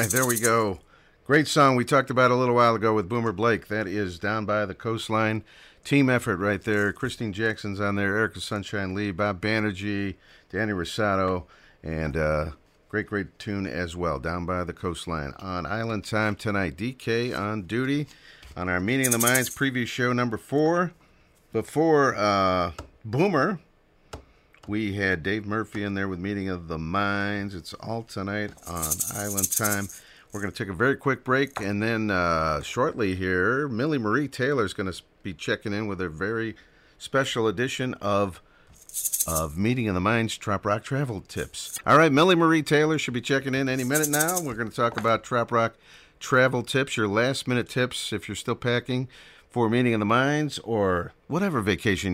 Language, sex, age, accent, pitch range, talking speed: English, male, 50-69, American, 95-125 Hz, 180 wpm